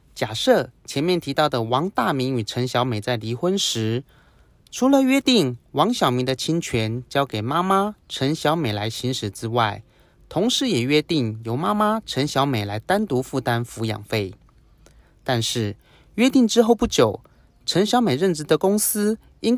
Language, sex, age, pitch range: Chinese, male, 30-49, 115-180 Hz